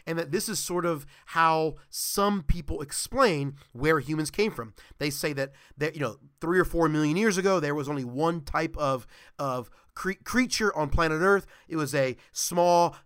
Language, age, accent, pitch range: English, 30-49, American, 135-170 Hz